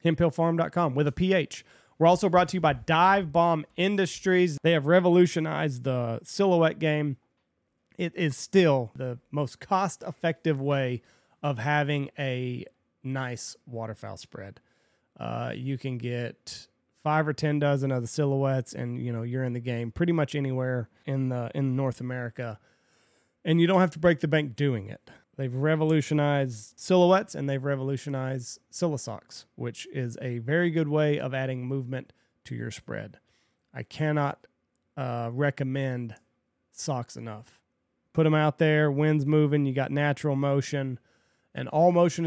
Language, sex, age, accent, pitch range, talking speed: English, male, 30-49, American, 130-160 Hz, 155 wpm